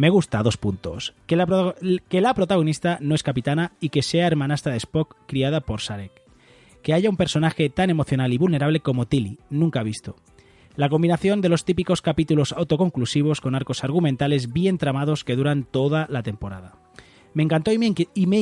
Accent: Spanish